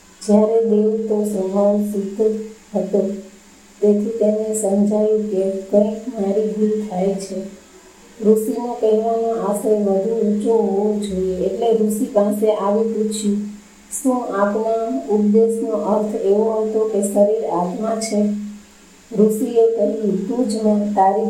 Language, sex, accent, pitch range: Gujarati, female, native, 200-215 Hz